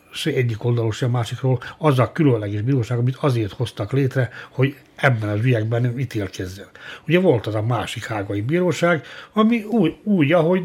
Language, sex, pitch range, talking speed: Hungarian, male, 110-140 Hz, 160 wpm